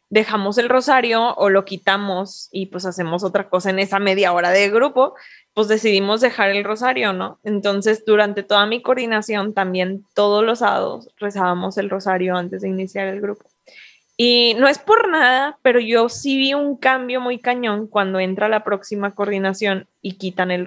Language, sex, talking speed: English, female, 175 wpm